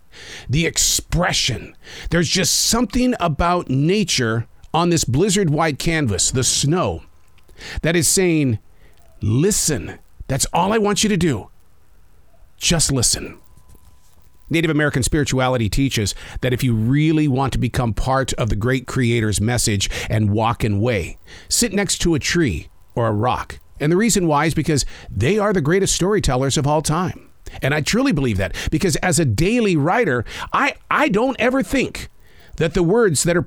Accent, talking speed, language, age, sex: American, 160 wpm, English, 50-69, male